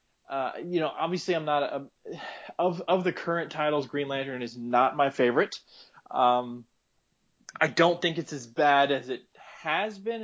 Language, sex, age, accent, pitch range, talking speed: English, male, 20-39, American, 140-180 Hz, 170 wpm